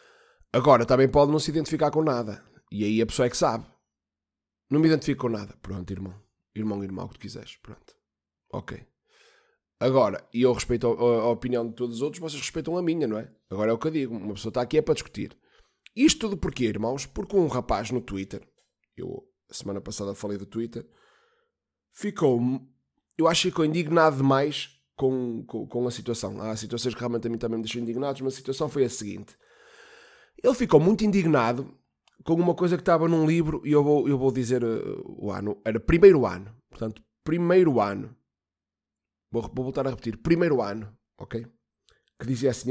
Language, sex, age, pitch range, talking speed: Portuguese, male, 20-39, 115-155 Hz, 195 wpm